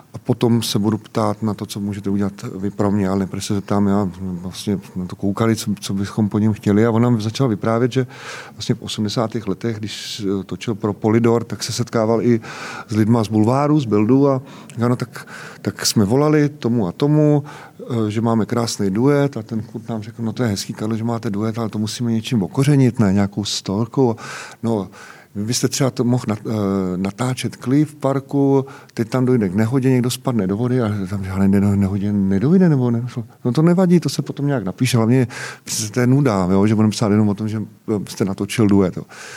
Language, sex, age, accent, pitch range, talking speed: Czech, male, 40-59, native, 105-130 Hz, 205 wpm